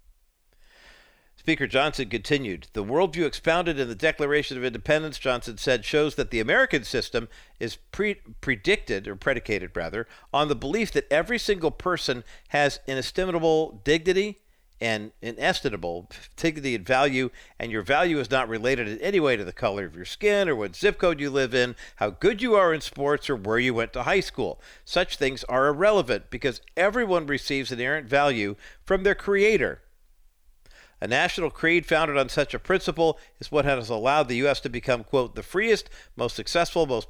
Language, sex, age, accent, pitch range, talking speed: English, male, 50-69, American, 110-155 Hz, 175 wpm